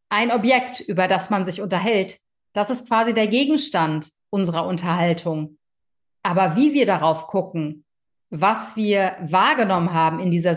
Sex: female